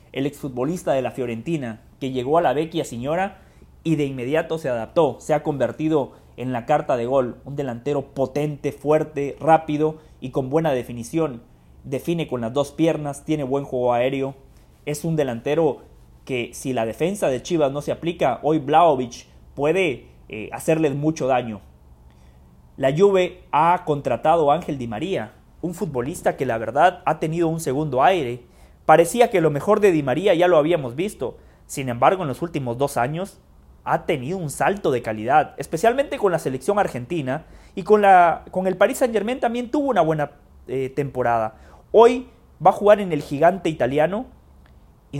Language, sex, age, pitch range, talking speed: English, male, 30-49, 130-170 Hz, 175 wpm